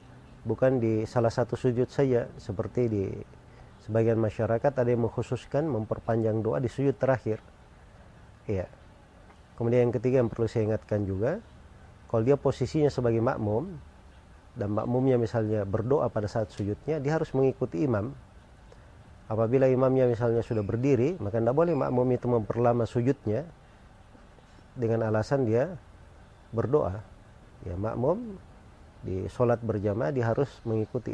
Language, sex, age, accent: Indonesian, male, 40-59, native